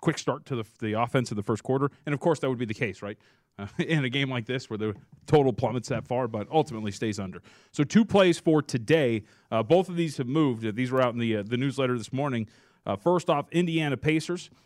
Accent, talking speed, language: American, 250 wpm, English